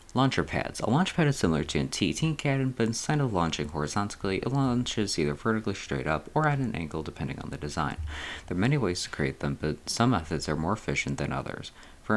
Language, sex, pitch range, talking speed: English, male, 75-110 Hz, 225 wpm